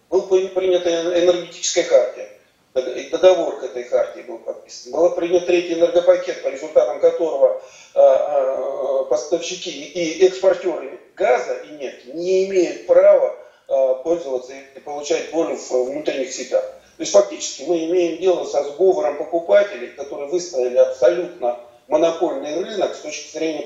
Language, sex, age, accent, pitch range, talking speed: Russian, male, 40-59, native, 165-270 Hz, 125 wpm